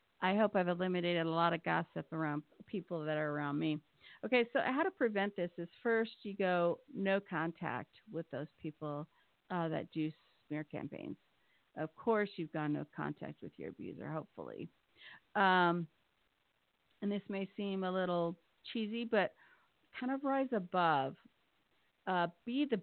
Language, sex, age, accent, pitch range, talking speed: English, female, 50-69, American, 165-215 Hz, 160 wpm